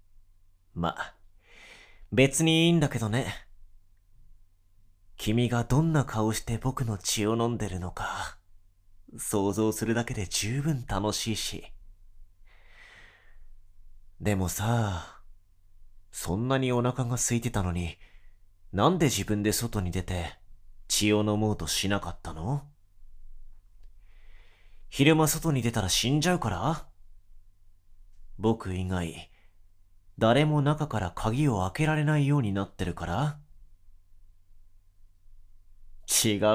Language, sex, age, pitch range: Japanese, male, 30-49, 90-120 Hz